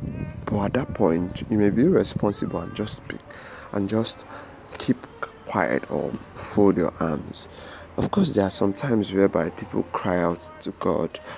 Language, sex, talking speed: English, male, 160 wpm